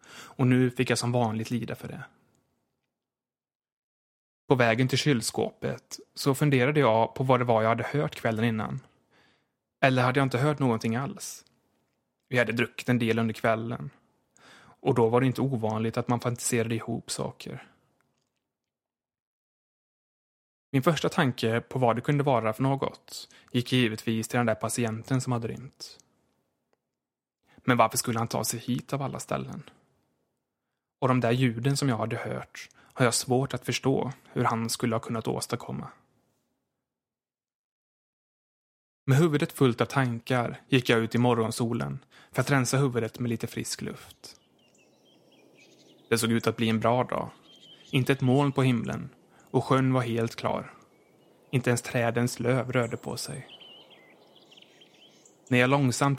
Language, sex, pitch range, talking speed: English, male, 115-130 Hz, 155 wpm